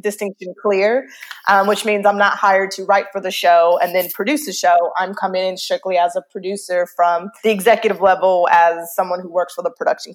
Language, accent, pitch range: English, American, 180-210 Hz